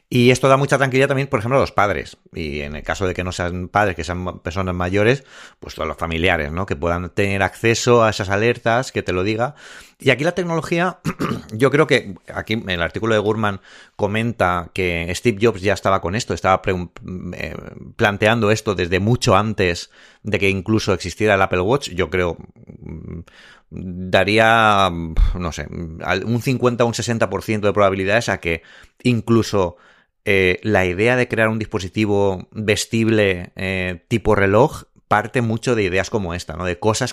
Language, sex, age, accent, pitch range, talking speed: Spanish, male, 30-49, Spanish, 90-115 Hz, 175 wpm